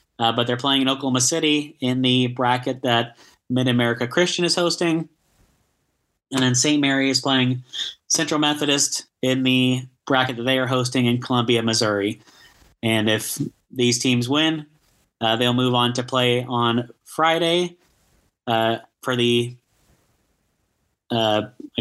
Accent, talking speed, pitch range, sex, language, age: American, 140 wpm, 125-150 Hz, male, English, 30-49